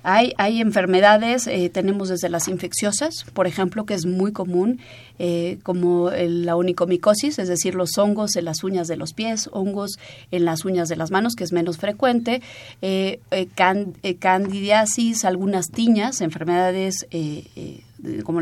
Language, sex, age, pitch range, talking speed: Spanish, female, 30-49, 170-200 Hz, 165 wpm